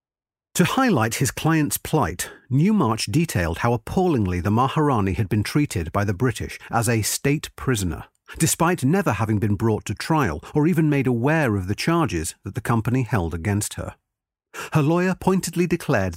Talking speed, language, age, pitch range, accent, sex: 165 wpm, English, 40-59, 100-150 Hz, British, male